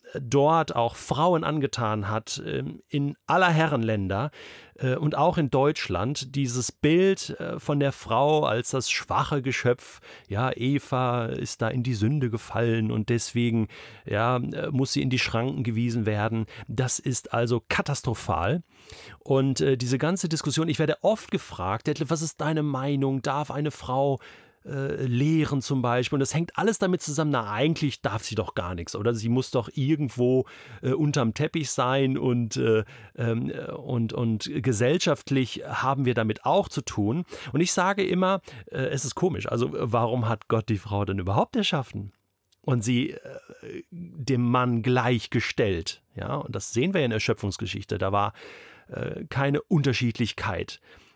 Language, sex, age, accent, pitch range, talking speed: German, male, 40-59, German, 115-150 Hz, 155 wpm